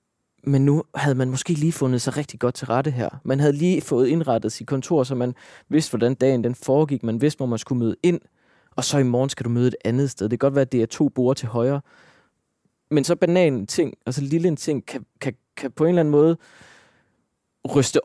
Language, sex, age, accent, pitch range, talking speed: Danish, male, 20-39, native, 125-155 Hz, 240 wpm